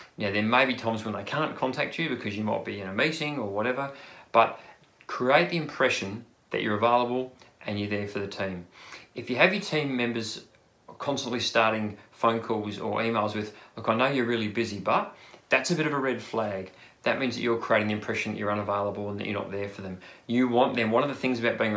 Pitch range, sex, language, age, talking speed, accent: 105-125 Hz, male, English, 30-49, 235 wpm, Australian